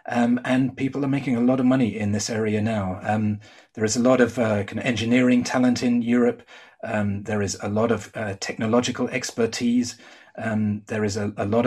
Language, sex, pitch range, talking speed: English, male, 105-120 Hz, 210 wpm